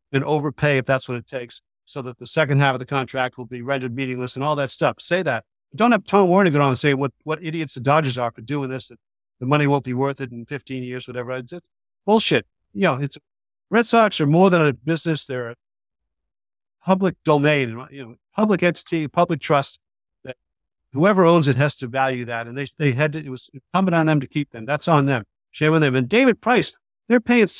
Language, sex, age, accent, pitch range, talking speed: English, male, 50-69, American, 125-160 Hz, 235 wpm